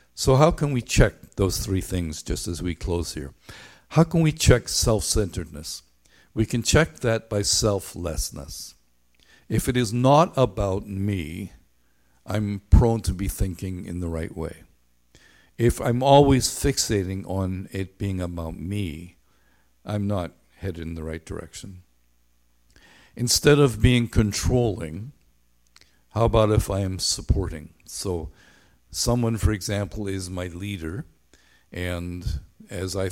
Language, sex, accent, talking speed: English, male, American, 135 wpm